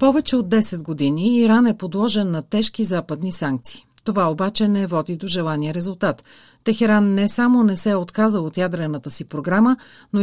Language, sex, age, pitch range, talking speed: Bulgarian, female, 40-59, 170-220 Hz, 175 wpm